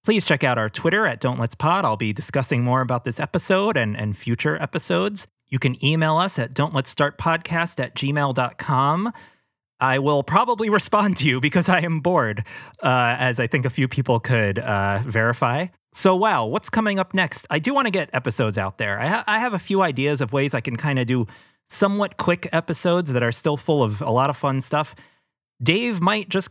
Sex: male